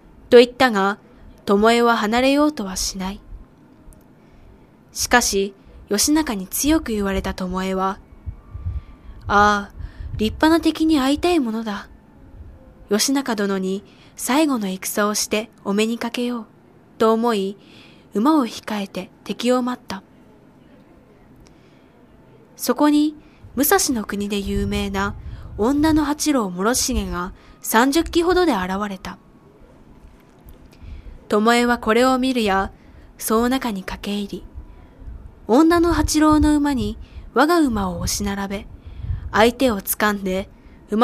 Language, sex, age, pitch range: Japanese, female, 20-39, 195-265 Hz